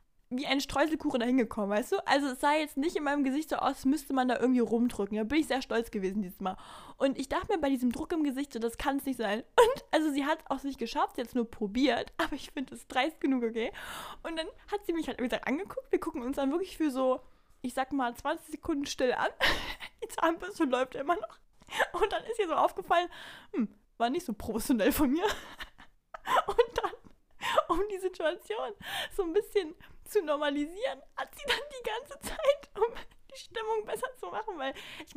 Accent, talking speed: German, 215 wpm